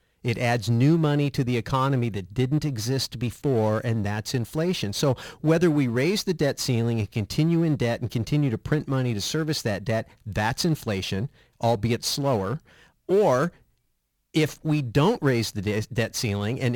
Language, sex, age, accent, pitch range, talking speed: English, male, 50-69, American, 115-145 Hz, 170 wpm